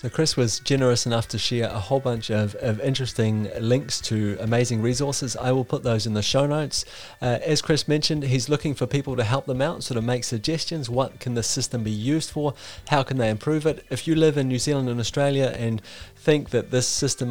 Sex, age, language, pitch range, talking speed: male, 30-49, English, 120-140 Hz, 230 wpm